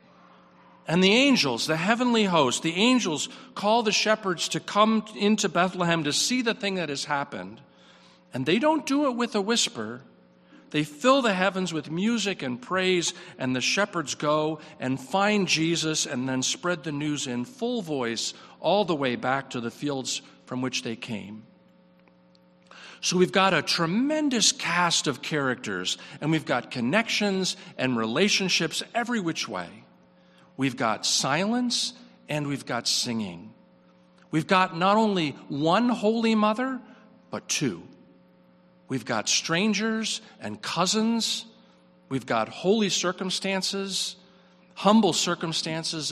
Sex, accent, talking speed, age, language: male, American, 140 wpm, 50-69, English